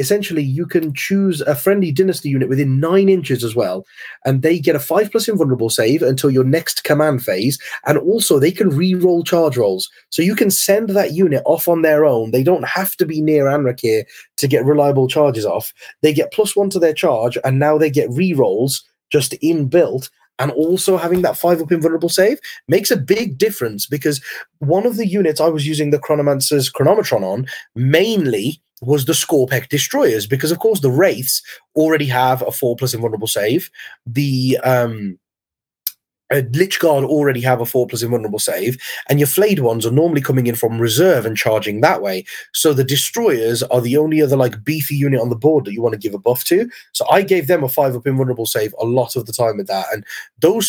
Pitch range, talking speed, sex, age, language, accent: 130-170 Hz, 205 wpm, male, 30-49, English, British